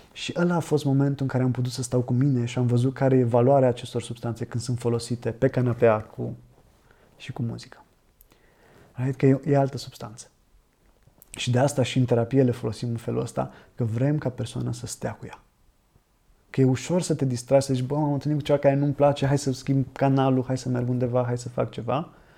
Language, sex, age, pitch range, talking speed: Romanian, male, 20-39, 120-135 Hz, 210 wpm